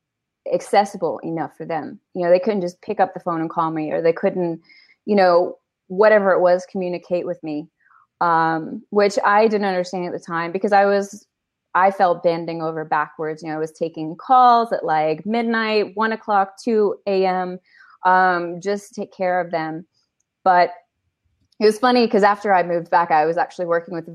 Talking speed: 190 wpm